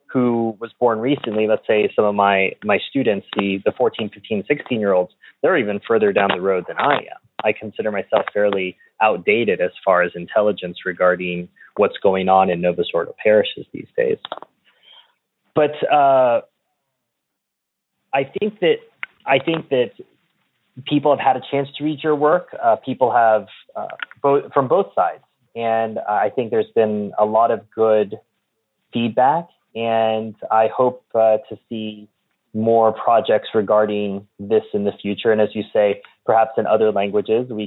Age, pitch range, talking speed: 30-49, 105-135 Hz, 160 wpm